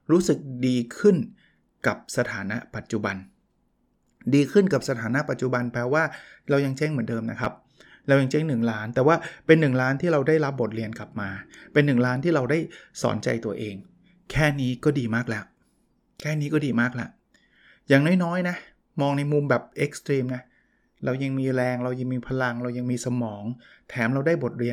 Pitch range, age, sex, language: 125-165 Hz, 20-39, male, Thai